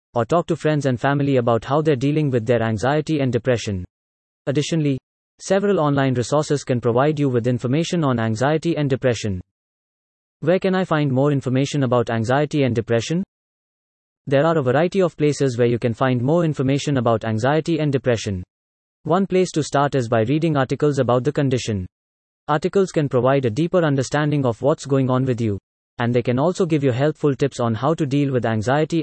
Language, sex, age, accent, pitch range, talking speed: English, male, 30-49, Indian, 120-150 Hz, 190 wpm